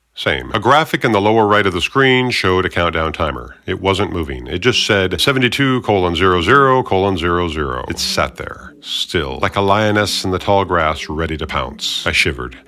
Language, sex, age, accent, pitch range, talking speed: English, male, 50-69, American, 85-125 Hz, 195 wpm